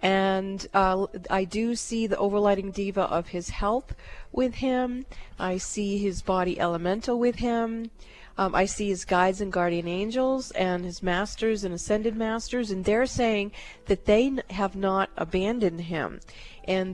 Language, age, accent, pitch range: English, 40-59, American, 190-230 Hz